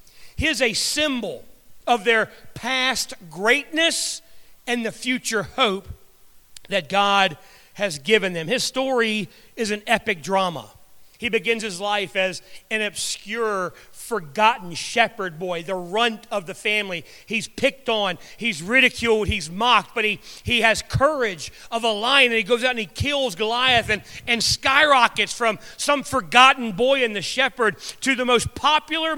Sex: male